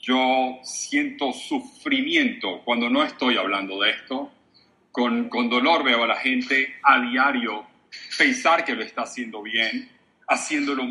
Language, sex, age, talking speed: Spanish, male, 40-59, 140 wpm